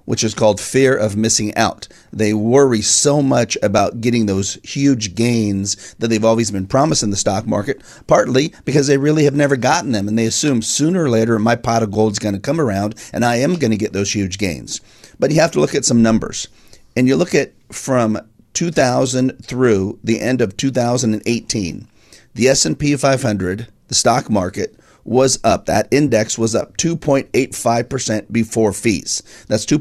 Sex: male